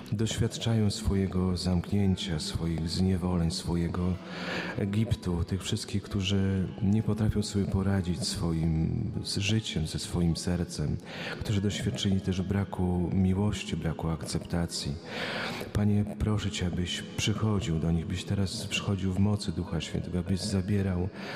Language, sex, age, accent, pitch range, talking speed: Polish, male, 40-59, native, 90-105 Hz, 120 wpm